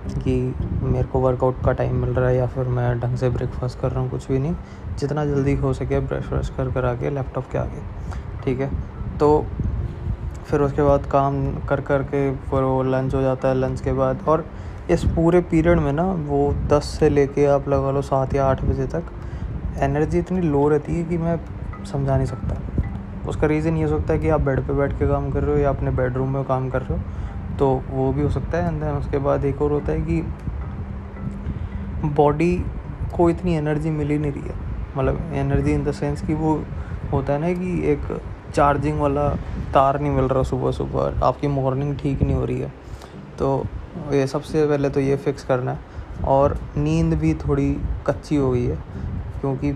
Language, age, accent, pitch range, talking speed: Hindi, 20-39, native, 120-145 Hz, 205 wpm